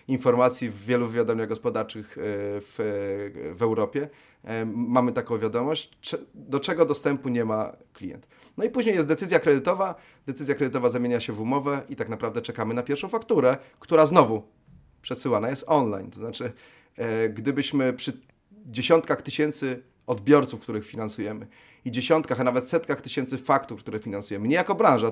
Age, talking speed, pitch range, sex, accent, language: 30-49, 150 wpm, 115-150 Hz, male, native, Polish